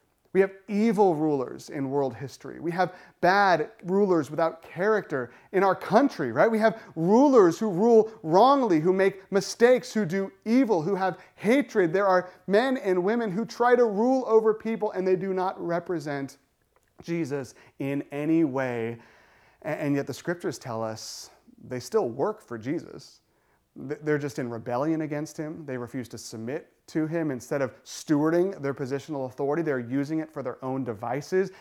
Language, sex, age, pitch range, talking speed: English, male, 30-49, 135-190 Hz, 165 wpm